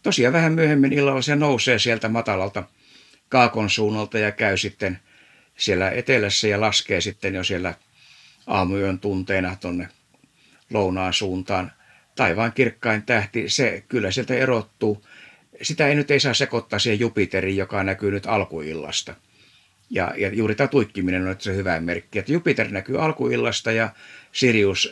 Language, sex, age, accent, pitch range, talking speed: Finnish, male, 60-79, native, 95-115 Hz, 145 wpm